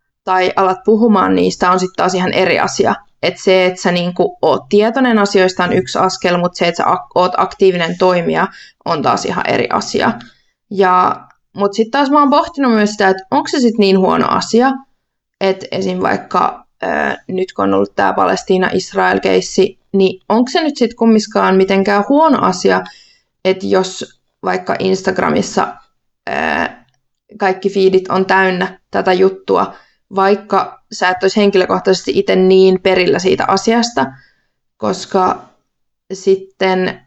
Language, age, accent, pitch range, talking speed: Finnish, 20-39, native, 185-205 Hz, 150 wpm